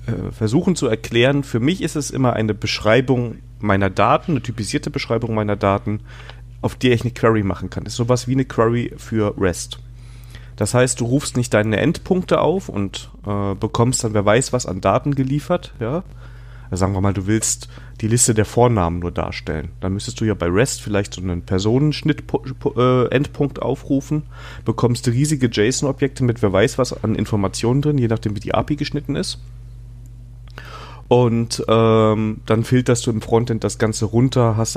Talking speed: 180 wpm